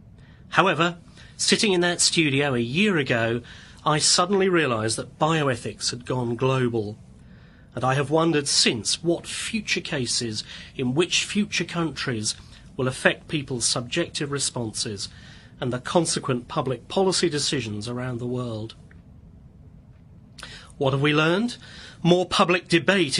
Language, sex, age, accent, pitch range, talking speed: English, male, 40-59, British, 120-165 Hz, 125 wpm